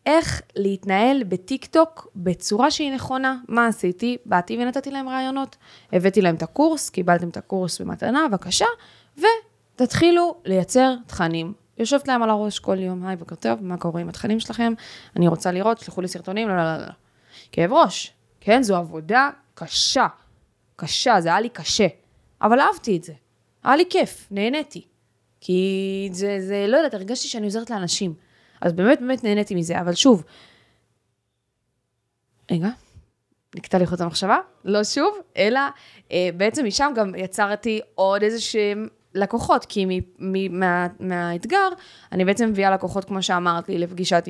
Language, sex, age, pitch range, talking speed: Hebrew, female, 20-39, 180-235 Hz, 150 wpm